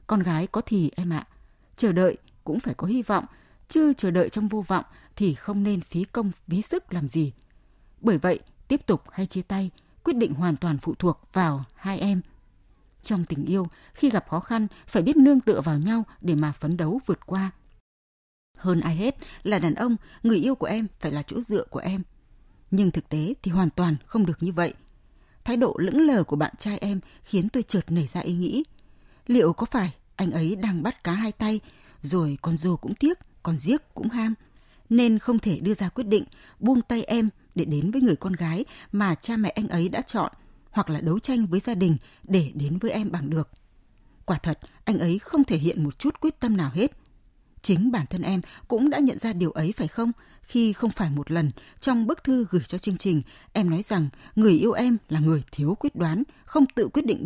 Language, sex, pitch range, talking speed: Vietnamese, female, 160-225 Hz, 220 wpm